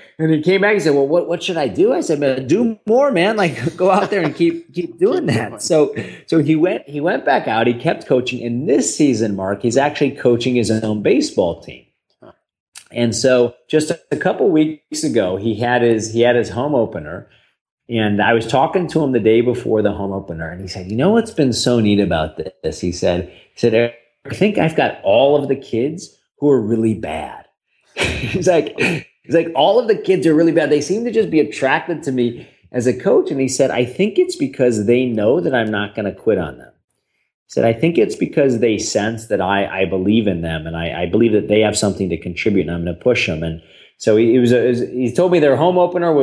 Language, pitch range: English, 105-155 Hz